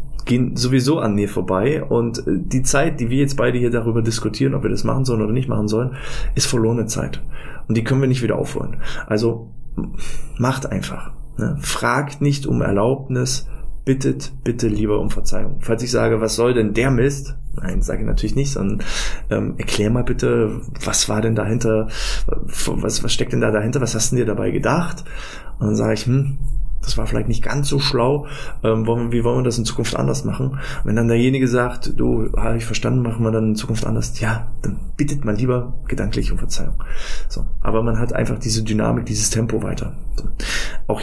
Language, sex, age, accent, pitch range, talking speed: German, male, 20-39, German, 110-135 Hz, 195 wpm